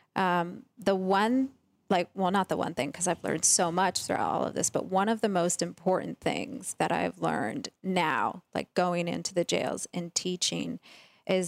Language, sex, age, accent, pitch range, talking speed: English, female, 20-39, American, 180-230 Hz, 195 wpm